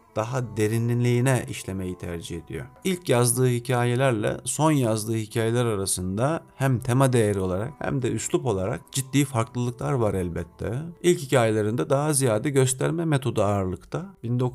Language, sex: Turkish, male